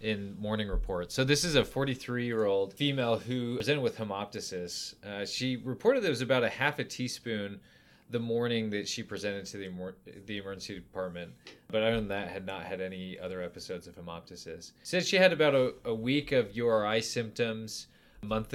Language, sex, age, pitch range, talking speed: English, male, 20-39, 100-125 Hz, 195 wpm